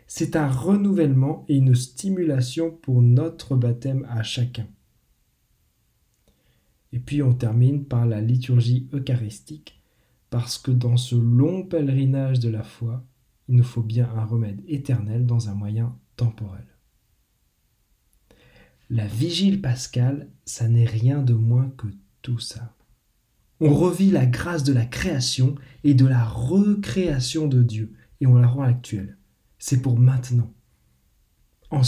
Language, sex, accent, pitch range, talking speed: French, male, French, 120-140 Hz, 135 wpm